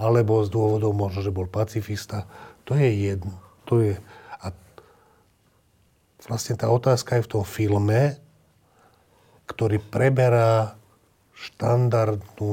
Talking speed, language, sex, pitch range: 110 wpm, Slovak, male, 100-115 Hz